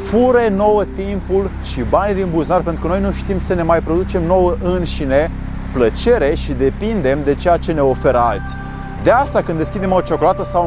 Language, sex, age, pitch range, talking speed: Romanian, male, 30-49, 145-200 Hz, 190 wpm